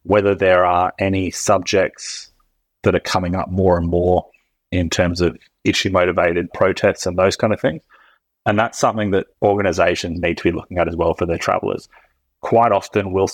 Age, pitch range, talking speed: 30-49, 85-95 Hz, 180 wpm